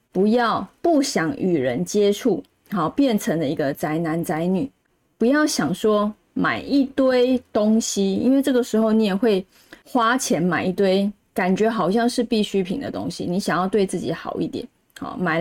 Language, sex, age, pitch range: Chinese, female, 20-39, 185-240 Hz